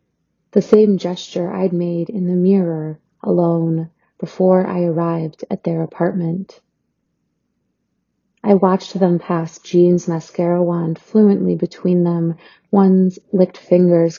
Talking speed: 120 wpm